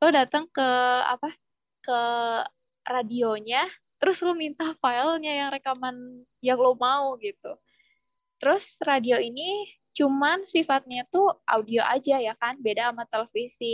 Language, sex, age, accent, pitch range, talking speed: Indonesian, female, 10-29, native, 225-295 Hz, 125 wpm